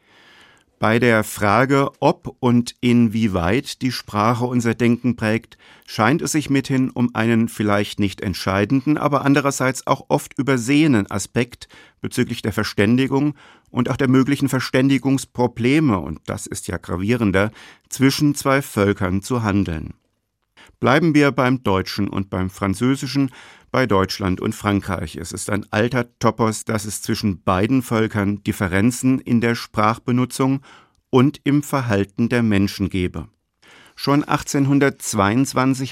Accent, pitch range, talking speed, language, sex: German, 100-130 Hz, 130 wpm, German, male